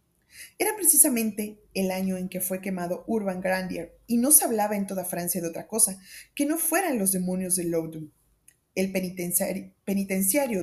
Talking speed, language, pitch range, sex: 165 wpm, Spanish, 185-250 Hz, female